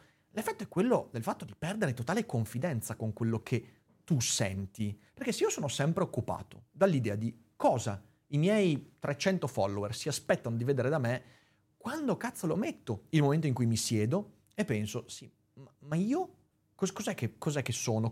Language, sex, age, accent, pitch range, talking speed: Italian, male, 30-49, native, 110-150 Hz, 170 wpm